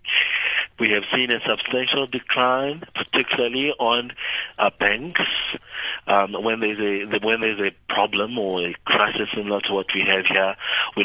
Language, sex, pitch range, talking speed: English, male, 95-115 Hz, 145 wpm